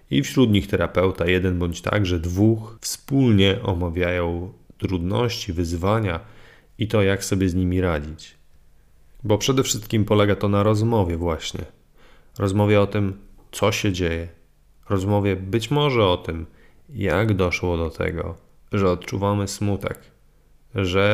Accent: native